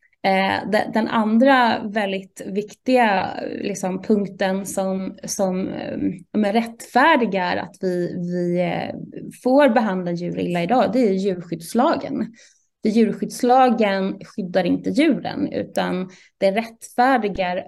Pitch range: 185-240 Hz